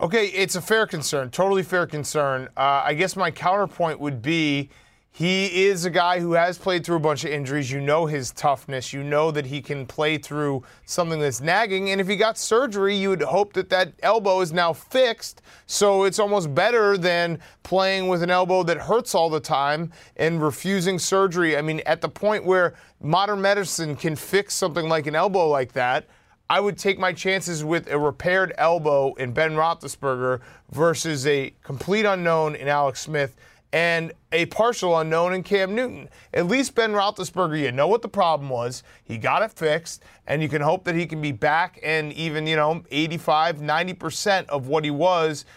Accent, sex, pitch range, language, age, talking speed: American, male, 150-190 Hz, English, 30-49, 195 wpm